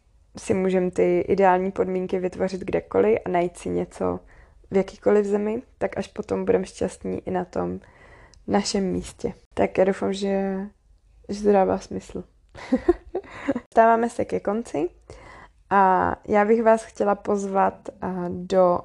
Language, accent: Czech, native